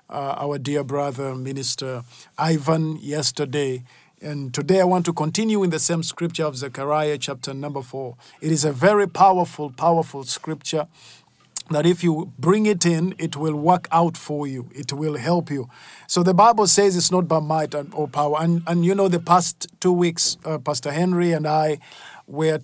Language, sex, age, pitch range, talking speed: English, male, 50-69, 150-180 Hz, 185 wpm